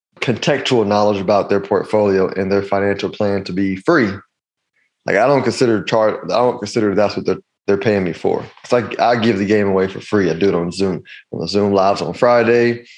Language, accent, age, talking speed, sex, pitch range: English, American, 20-39, 215 wpm, male, 95-115 Hz